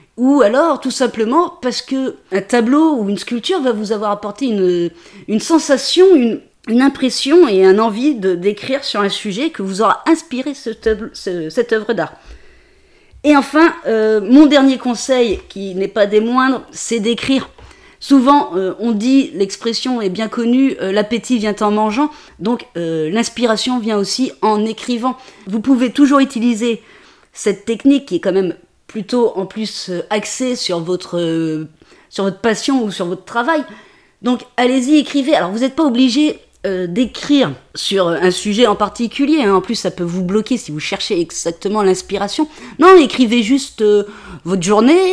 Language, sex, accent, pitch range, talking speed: French, female, French, 200-270 Hz, 165 wpm